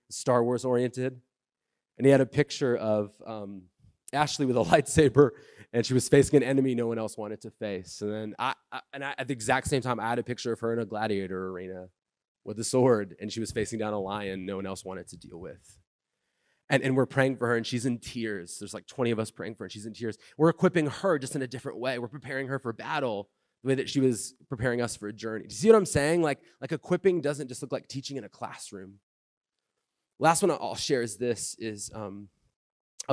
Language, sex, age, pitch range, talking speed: English, male, 20-39, 110-135 Hz, 245 wpm